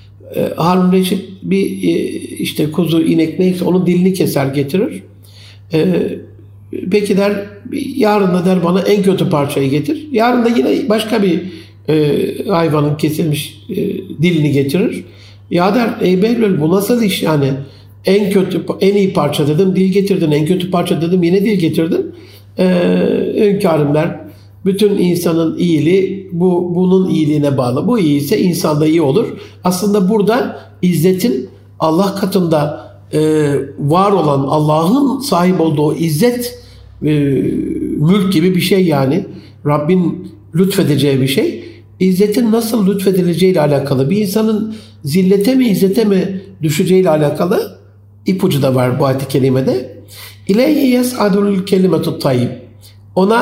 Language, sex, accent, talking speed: Turkish, male, native, 125 wpm